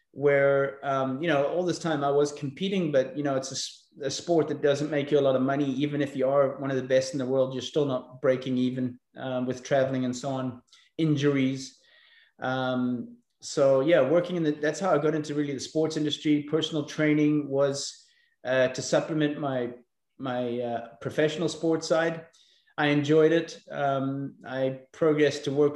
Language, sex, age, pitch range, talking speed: English, male, 30-49, 130-150 Hz, 195 wpm